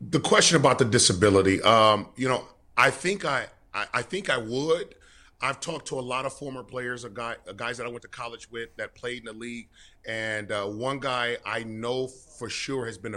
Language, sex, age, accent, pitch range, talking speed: English, male, 30-49, American, 105-125 Hz, 225 wpm